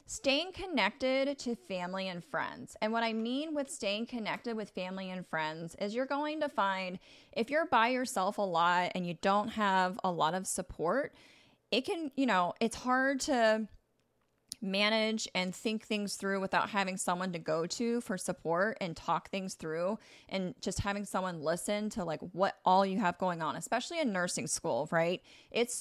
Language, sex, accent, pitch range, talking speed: English, female, American, 180-235 Hz, 185 wpm